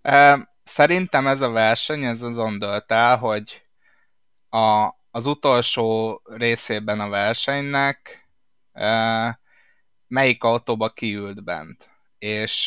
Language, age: Hungarian, 20-39